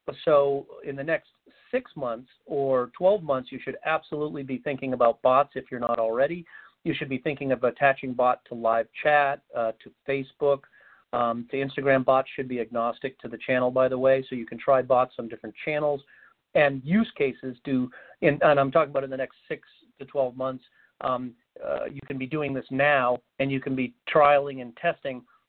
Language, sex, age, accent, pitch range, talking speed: English, male, 40-59, American, 130-155 Hz, 200 wpm